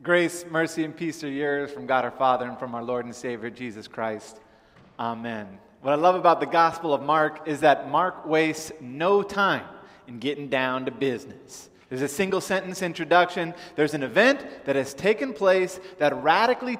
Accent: American